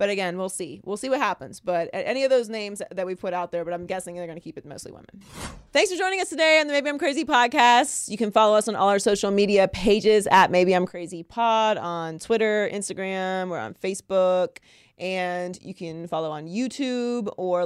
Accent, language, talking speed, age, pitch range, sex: American, English, 230 wpm, 30-49, 170-205 Hz, female